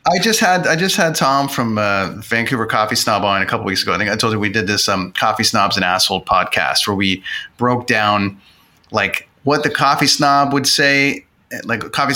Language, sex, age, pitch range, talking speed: English, male, 30-49, 110-135 Hz, 215 wpm